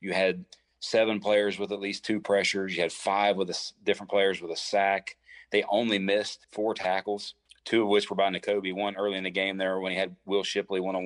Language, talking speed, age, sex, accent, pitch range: English, 235 wpm, 30-49, male, American, 90-100 Hz